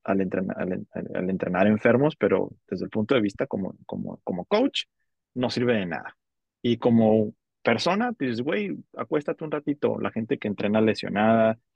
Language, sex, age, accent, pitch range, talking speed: Spanish, male, 30-49, Mexican, 100-120 Hz, 170 wpm